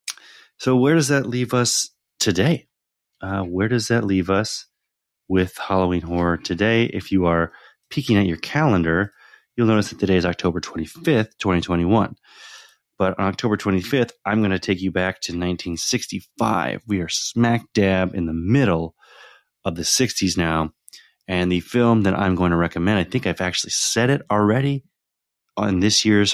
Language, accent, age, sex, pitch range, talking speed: English, American, 30-49, male, 90-110 Hz, 165 wpm